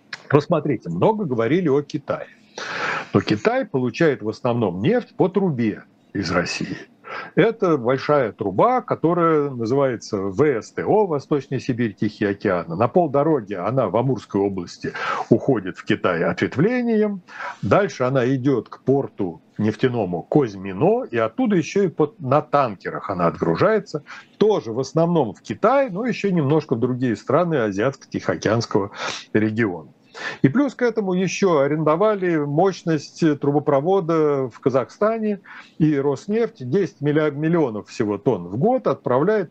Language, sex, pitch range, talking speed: Russian, male, 130-185 Hz, 125 wpm